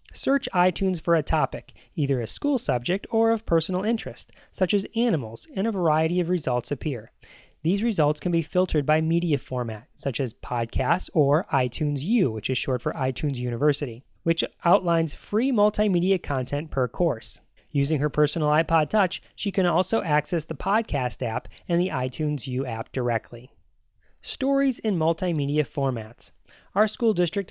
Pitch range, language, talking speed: 135-185 Hz, English, 160 wpm